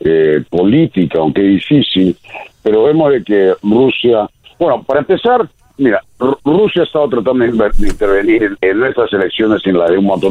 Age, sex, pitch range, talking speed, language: 60-79, male, 90-145 Hz, 175 wpm, Spanish